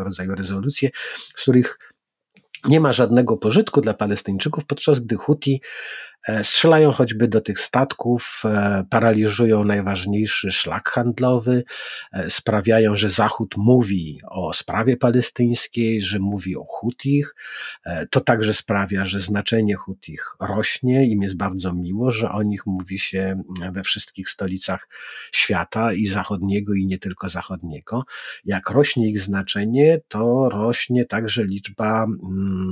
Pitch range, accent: 100-125 Hz, native